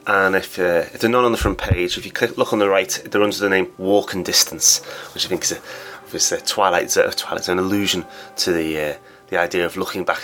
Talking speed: 270 wpm